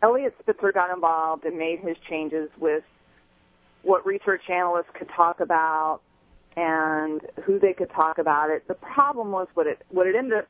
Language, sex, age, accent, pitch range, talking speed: English, female, 40-59, American, 140-180 Hz, 175 wpm